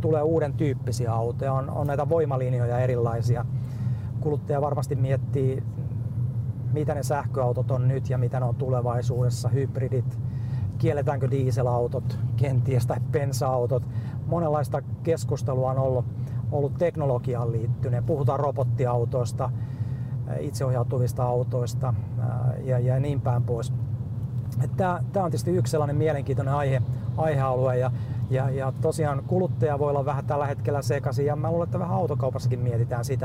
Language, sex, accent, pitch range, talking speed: Finnish, male, native, 120-135 Hz, 130 wpm